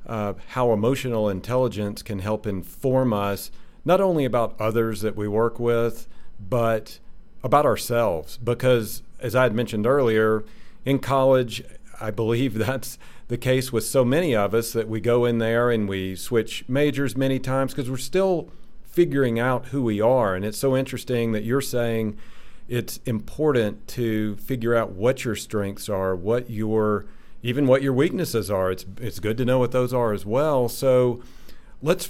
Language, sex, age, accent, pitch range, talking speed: English, male, 40-59, American, 110-130 Hz, 170 wpm